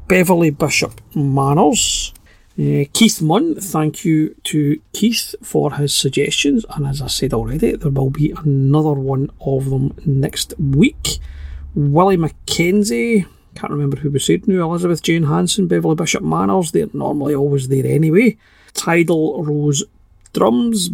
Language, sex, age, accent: English, male, 40-59, British